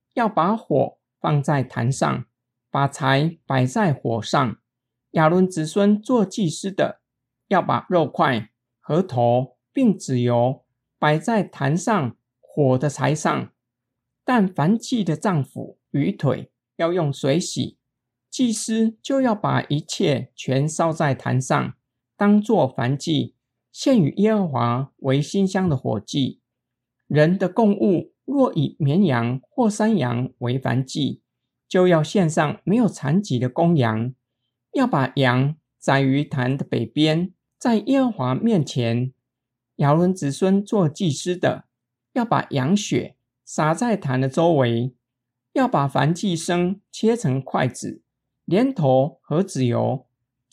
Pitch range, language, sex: 125-190 Hz, Chinese, male